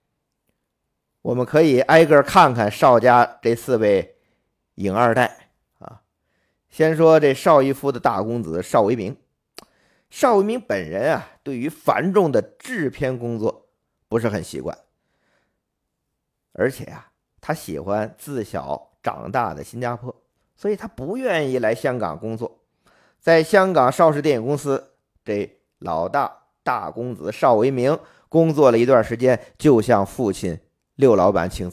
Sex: male